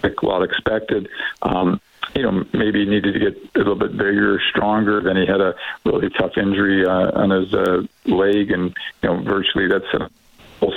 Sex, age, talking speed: male, 50-69, 195 wpm